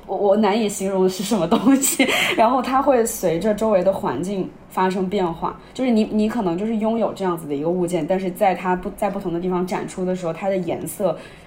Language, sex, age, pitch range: Chinese, female, 20-39, 170-215 Hz